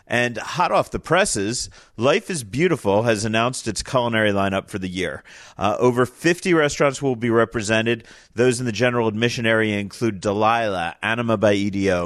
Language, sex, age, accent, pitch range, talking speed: English, male, 40-59, American, 105-130 Hz, 170 wpm